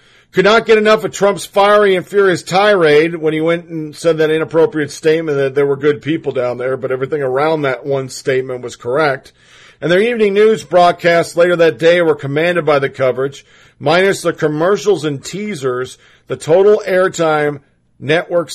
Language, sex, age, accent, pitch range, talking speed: English, male, 50-69, American, 125-170 Hz, 180 wpm